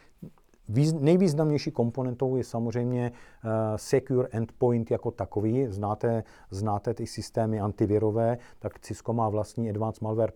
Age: 50-69